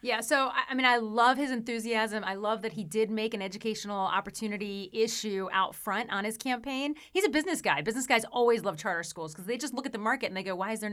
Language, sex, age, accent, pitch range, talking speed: English, female, 30-49, American, 195-255 Hz, 255 wpm